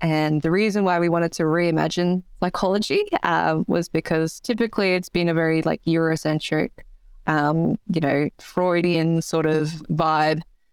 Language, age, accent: English, 20-39, Australian